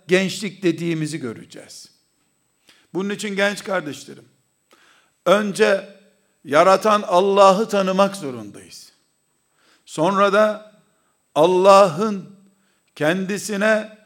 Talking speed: 70 wpm